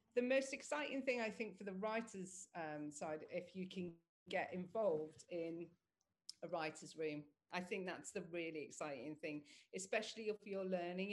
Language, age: English, 40-59